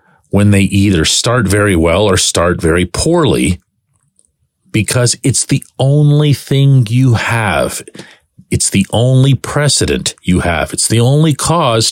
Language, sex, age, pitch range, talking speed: English, male, 40-59, 95-135 Hz, 135 wpm